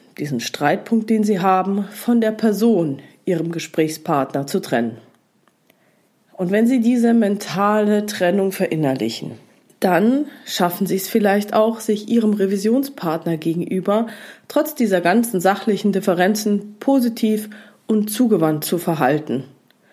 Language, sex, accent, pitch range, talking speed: German, female, German, 165-215 Hz, 115 wpm